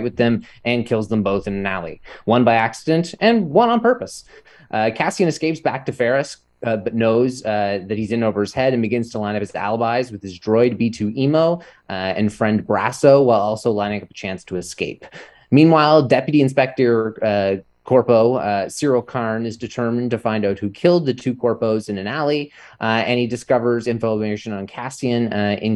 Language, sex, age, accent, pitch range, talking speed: English, male, 20-39, American, 105-135 Hz, 200 wpm